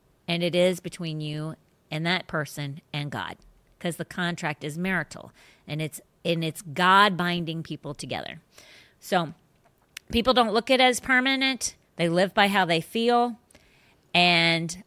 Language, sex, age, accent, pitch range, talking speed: English, female, 40-59, American, 160-200 Hz, 155 wpm